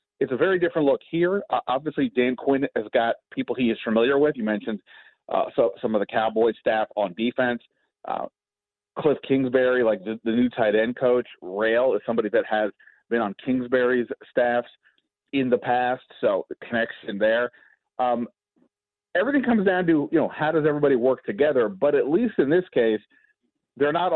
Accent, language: American, English